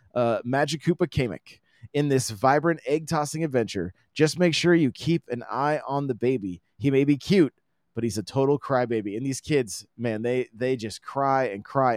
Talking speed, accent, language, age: 190 wpm, American, English, 20-39